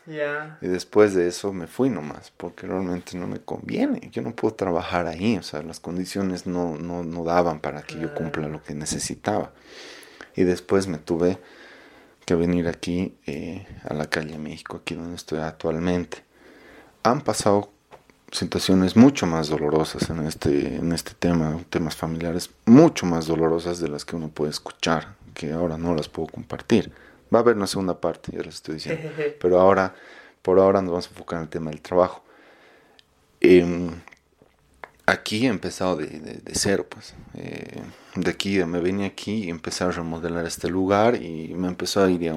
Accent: Mexican